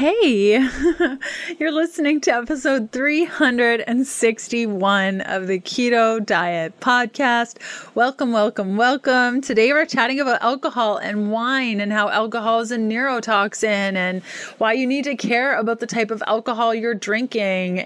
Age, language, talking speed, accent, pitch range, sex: 30-49, English, 135 wpm, American, 200-240 Hz, female